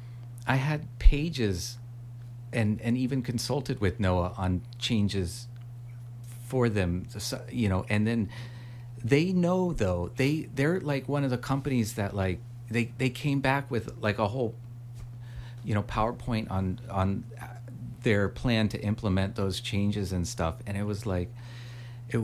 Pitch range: 100-120 Hz